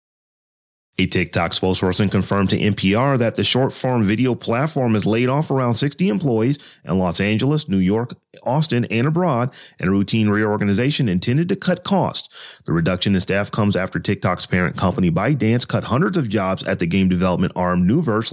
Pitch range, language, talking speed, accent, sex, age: 95-125 Hz, English, 175 wpm, American, male, 30-49